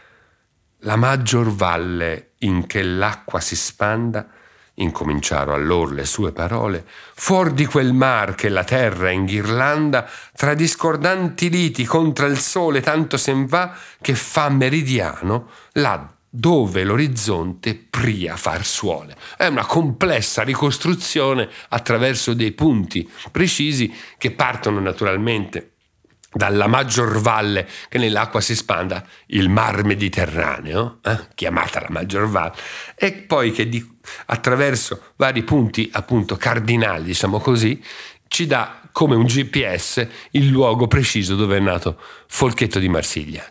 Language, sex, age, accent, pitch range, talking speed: Italian, male, 50-69, native, 100-140 Hz, 125 wpm